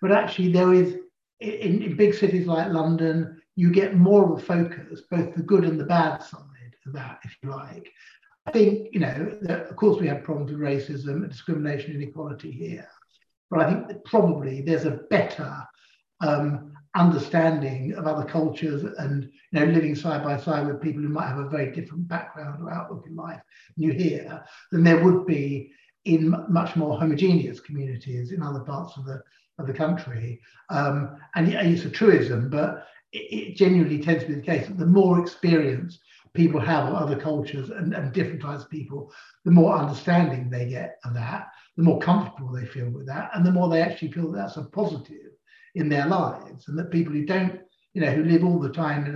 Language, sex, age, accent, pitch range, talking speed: English, male, 60-79, British, 145-175 Hz, 205 wpm